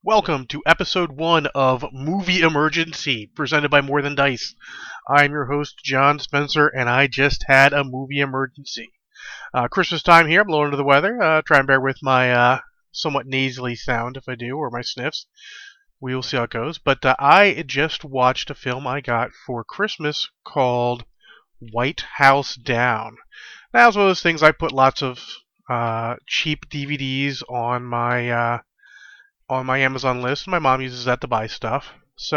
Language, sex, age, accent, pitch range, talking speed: English, male, 30-49, American, 130-165 Hz, 180 wpm